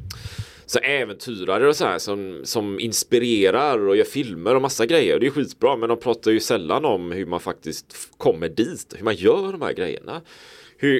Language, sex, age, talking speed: Swedish, male, 30-49, 175 wpm